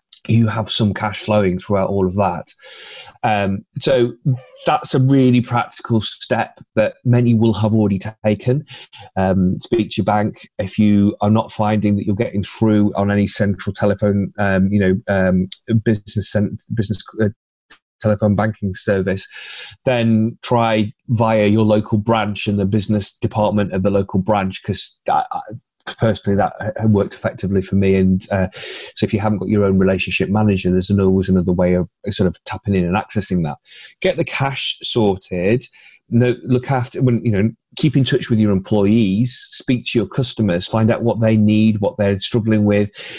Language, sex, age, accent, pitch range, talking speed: English, male, 30-49, British, 100-115 Hz, 170 wpm